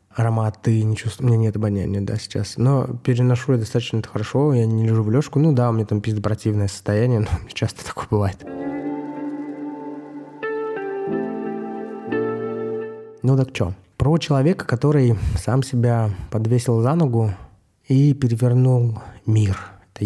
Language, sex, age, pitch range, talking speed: Russian, male, 20-39, 105-135 Hz, 140 wpm